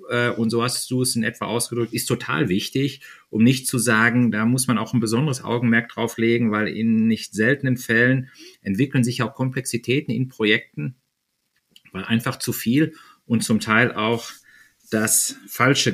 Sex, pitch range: male, 115-130 Hz